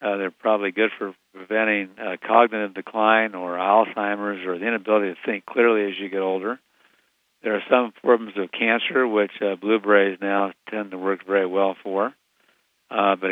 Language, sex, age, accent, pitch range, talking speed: English, male, 50-69, American, 95-115 Hz, 175 wpm